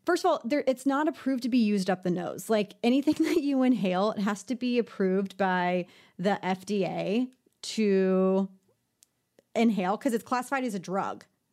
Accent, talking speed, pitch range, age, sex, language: American, 175 wpm, 195-250 Hz, 30-49, female, English